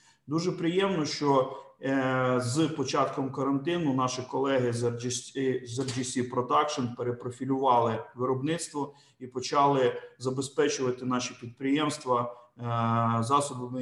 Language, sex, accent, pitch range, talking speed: Ukrainian, male, native, 120-140 Hz, 85 wpm